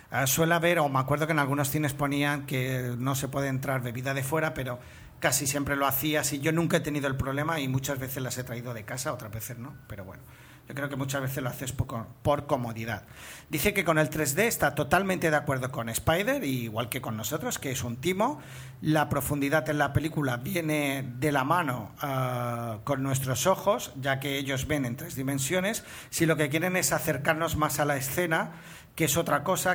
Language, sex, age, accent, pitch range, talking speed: Spanish, male, 40-59, Spanish, 130-160 Hz, 210 wpm